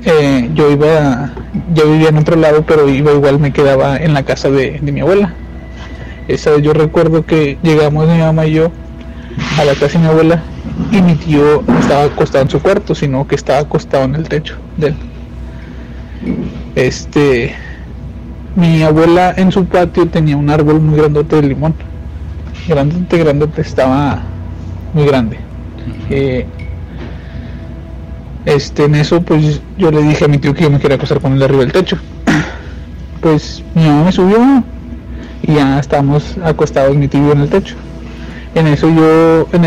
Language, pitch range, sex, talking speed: Spanish, 110-160 Hz, male, 170 wpm